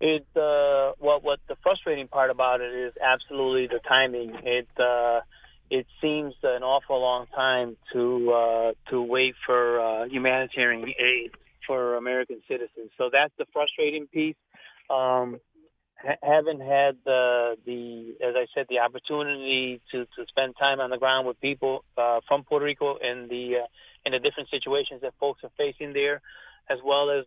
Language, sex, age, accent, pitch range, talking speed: English, male, 30-49, American, 125-145 Hz, 165 wpm